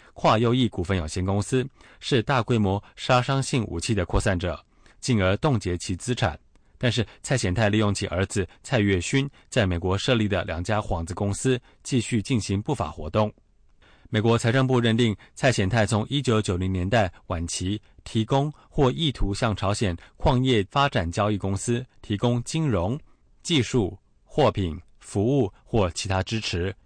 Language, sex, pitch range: English, male, 95-125 Hz